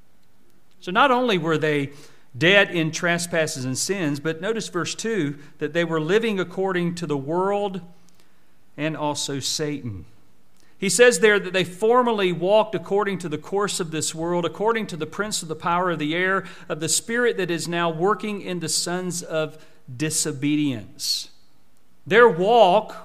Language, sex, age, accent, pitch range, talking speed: English, male, 50-69, American, 160-215 Hz, 165 wpm